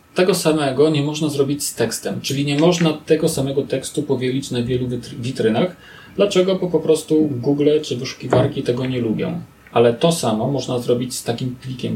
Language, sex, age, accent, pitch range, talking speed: Polish, male, 40-59, native, 130-155 Hz, 175 wpm